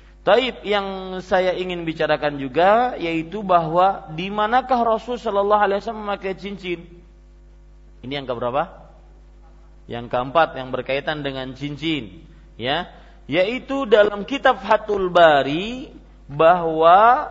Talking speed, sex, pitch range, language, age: 115 wpm, male, 130-200 Hz, Malay, 40-59